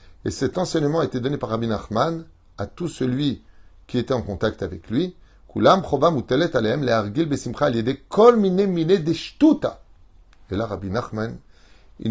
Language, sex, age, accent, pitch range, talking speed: French, male, 30-49, French, 95-140 Hz, 115 wpm